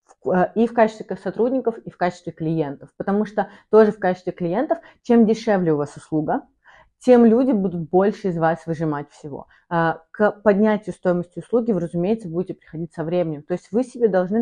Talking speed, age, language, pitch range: 170 wpm, 30-49, Russian, 170-215 Hz